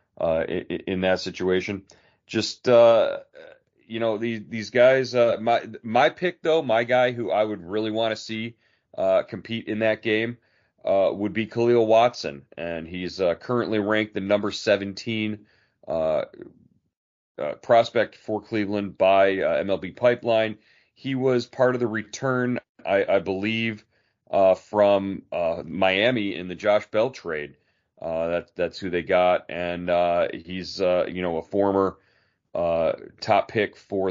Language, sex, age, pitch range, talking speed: English, male, 40-59, 95-115 Hz, 155 wpm